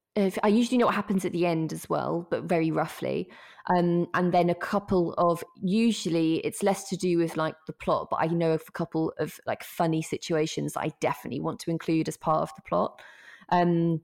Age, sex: 20-39, female